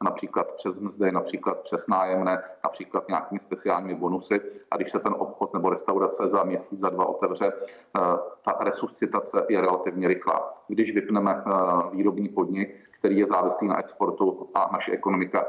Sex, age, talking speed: male, 40-59, 150 wpm